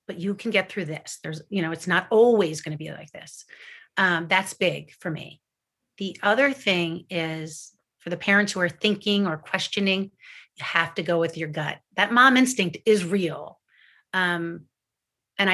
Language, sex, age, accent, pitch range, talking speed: English, female, 30-49, American, 170-205 Hz, 185 wpm